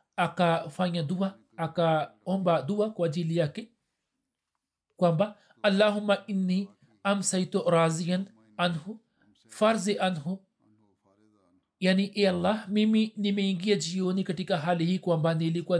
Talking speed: 105 wpm